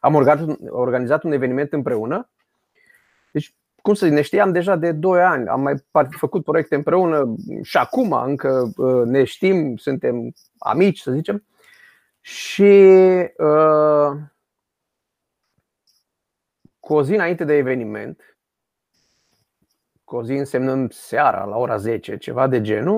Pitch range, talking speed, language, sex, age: 145-205 Hz, 125 wpm, Romanian, male, 30-49